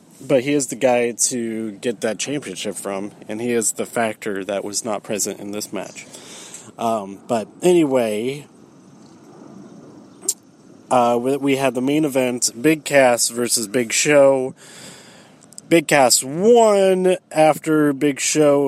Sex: male